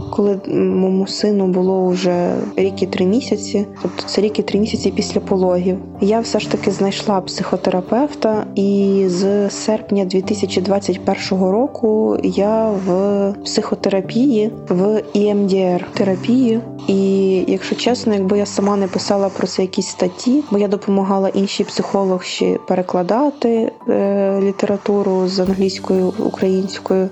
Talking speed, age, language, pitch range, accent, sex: 125 wpm, 20-39, Ukrainian, 190-215 Hz, native, female